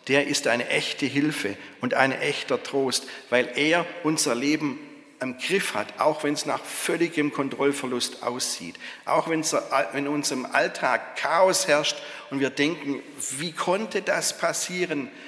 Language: German